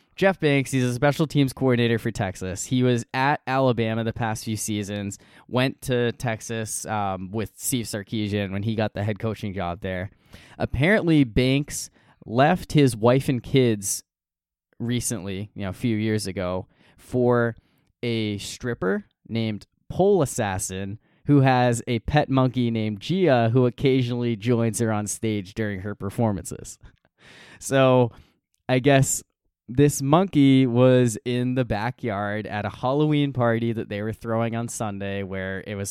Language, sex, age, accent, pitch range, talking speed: English, male, 20-39, American, 105-130 Hz, 150 wpm